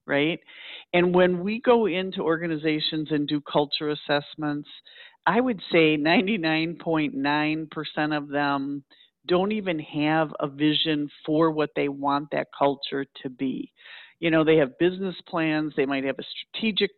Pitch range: 150-190 Hz